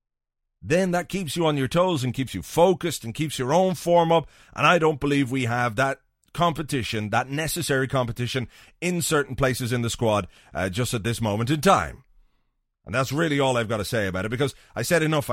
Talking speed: 215 wpm